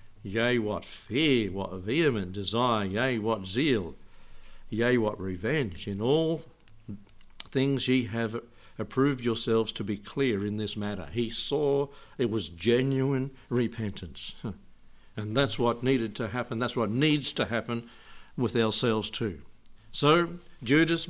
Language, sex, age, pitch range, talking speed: English, male, 60-79, 110-140 Hz, 135 wpm